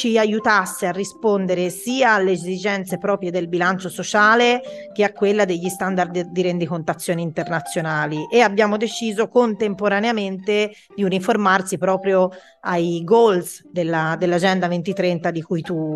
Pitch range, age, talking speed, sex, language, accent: 180-225 Hz, 30-49, 125 wpm, female, Italian, native